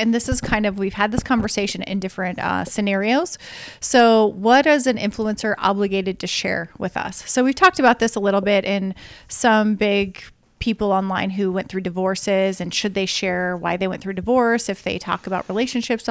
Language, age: English, 30-49